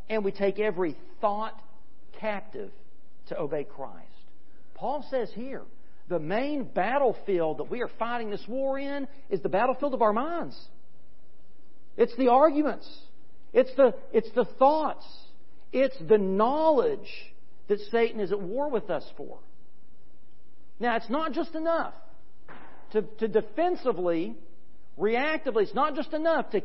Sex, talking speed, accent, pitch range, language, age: male, 135 wpm, American, 210-280 Hz, English, 50-69